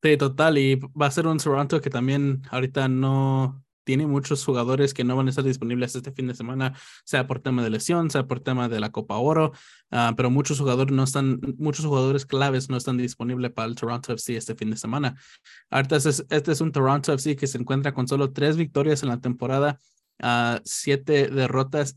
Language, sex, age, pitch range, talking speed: Spanish, male, 20-39, 125-140 Hz, 210 wpm